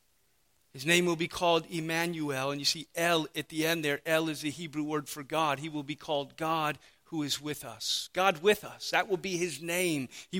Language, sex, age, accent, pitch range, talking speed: English, male, 40-59, American, 140-165 Hz, 225 wpm